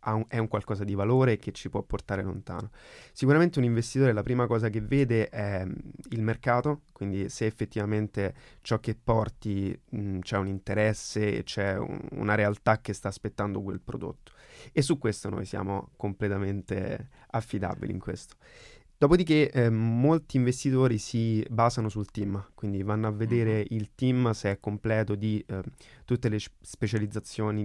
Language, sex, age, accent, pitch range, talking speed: Italian, male, 20-39, native, 100-115 Hz, 150 wpm